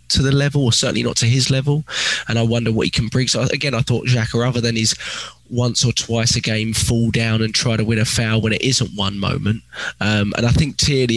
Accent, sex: British, male